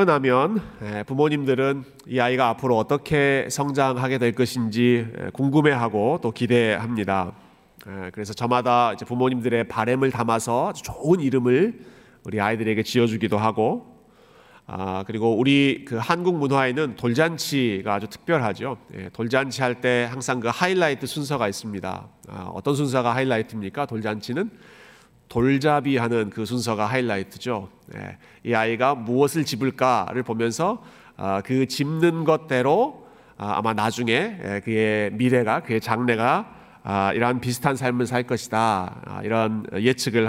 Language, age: Korean, 30-49